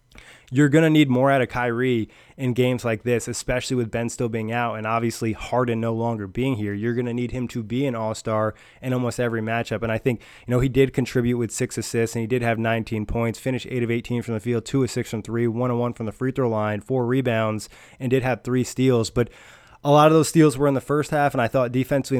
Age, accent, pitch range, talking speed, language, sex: 20-39, American, 115-130 Hz, 260 wpm, English, male